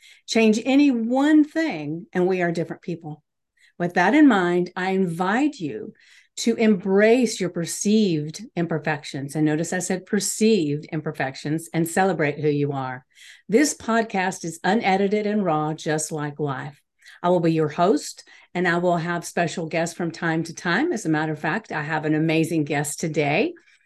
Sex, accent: female, American